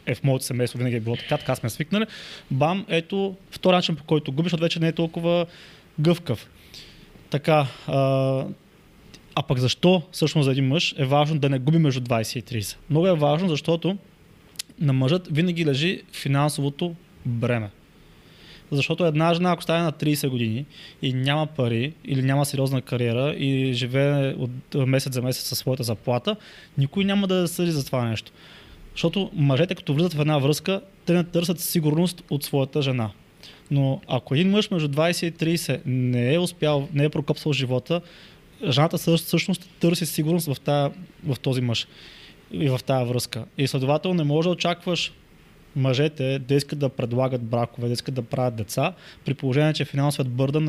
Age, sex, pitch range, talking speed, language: 20-39, male, 130-170 Hz, 175 wpm, Bulgarian